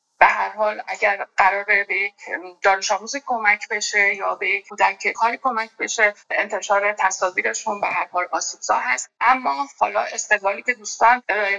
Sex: female